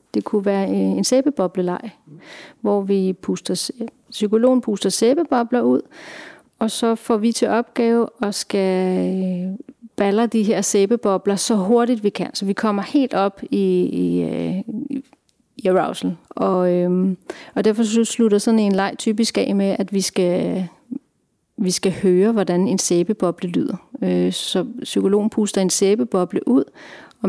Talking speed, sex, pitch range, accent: 145 wpm, female, 185-230 Hz, native